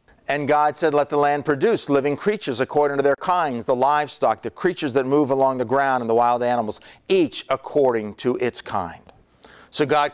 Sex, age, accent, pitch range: male, 50-69, American, 140-200 Hz